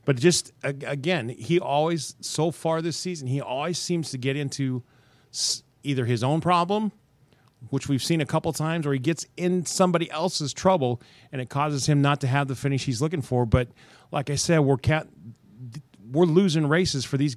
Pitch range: 120-155 Hz